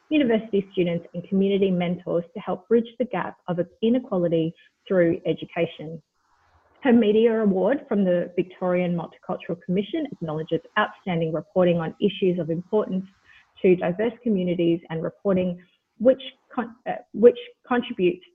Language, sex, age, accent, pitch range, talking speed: English, female, 30-49, Australian, 175-235 Hz, 125 wpm